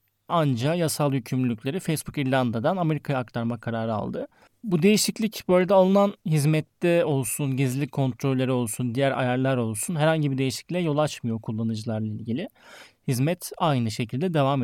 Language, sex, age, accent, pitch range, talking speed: Turkish, male, 30-49, native, 120-160 Hz, 130 wpm